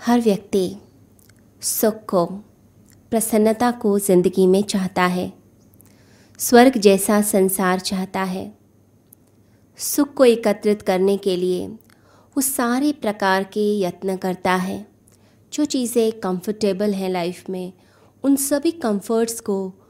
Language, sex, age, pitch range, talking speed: Hindi, female, 20-39, 185-225 Hz, 115 wpm